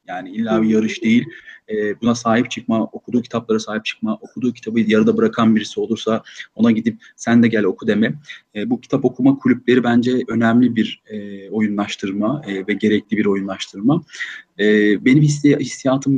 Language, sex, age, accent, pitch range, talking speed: Turkish, male, 40-59, native, 110-125 Hz, 145 wpm